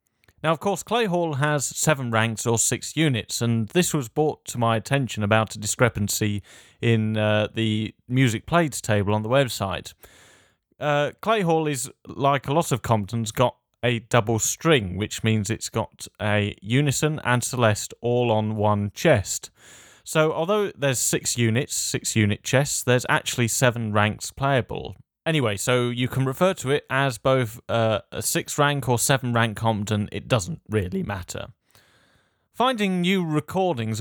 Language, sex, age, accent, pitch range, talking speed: English, male, 30-49, British, 110-140 Hz, 155 wpm